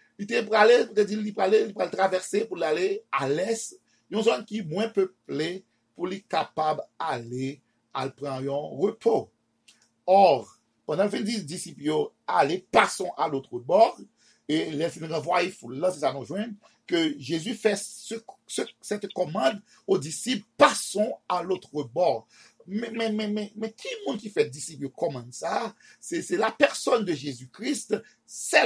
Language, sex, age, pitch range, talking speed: French, male, 50-69, 155-215 Hz, 155 wpm